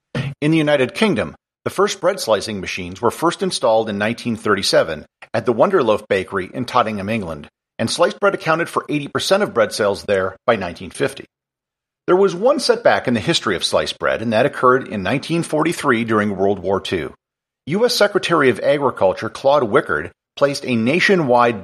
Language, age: English, 50-69